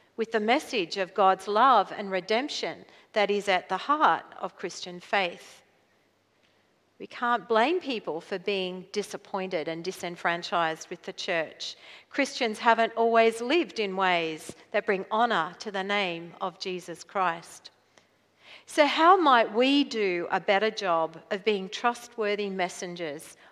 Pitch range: 190-245 Hz